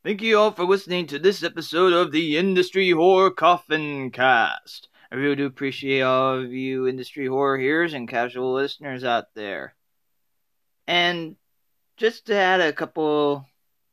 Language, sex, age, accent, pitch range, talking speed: English, male, 30-49, American, 140-180 Hz, 150 wpm